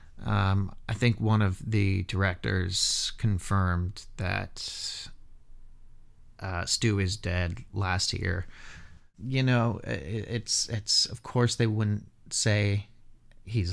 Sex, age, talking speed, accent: male, 30-49, 110 wpm, American